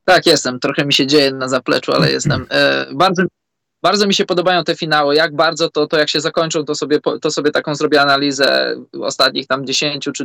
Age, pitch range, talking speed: 20-39, 150-170 Hz, 200 wpm